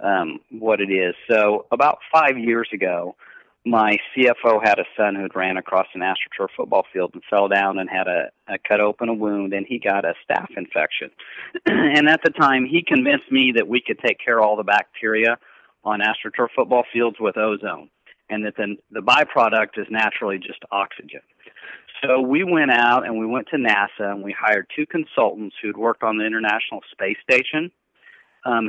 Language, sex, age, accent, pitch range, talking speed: English, male, 50-69, American, 105-125 Hz, 190 wpm